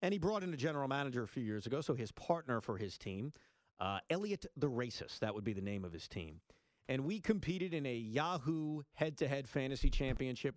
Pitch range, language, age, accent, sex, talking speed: 115-160 Hz, English, 40-59, American, male, 215 wpm